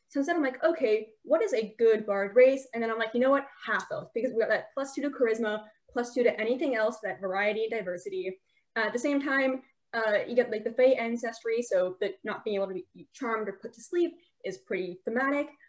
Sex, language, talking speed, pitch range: female, English, 235 wpm, 215-270 Hz